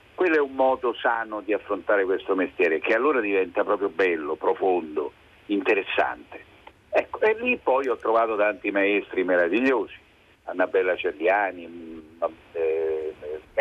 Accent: native